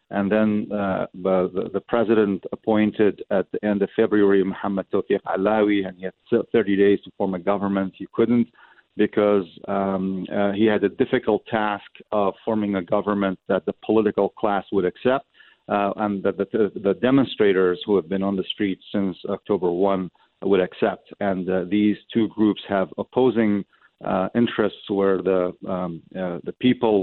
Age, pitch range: 50-69, 95-105 Hz